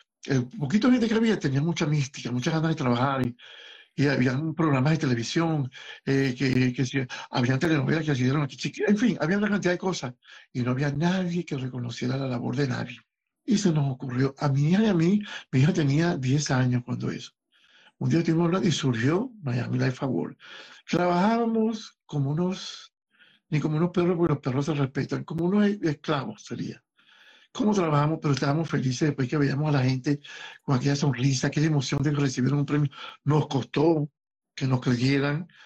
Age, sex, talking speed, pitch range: 60-79, male, 190 wpm, 135-165 Hz